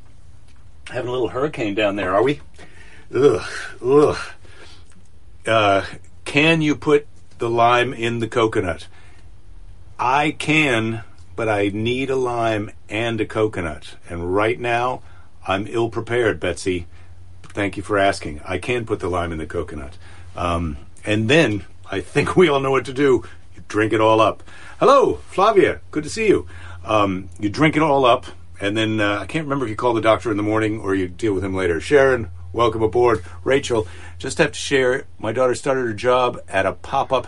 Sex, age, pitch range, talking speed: male, 60-79, 90-125 Hz, 175 wpm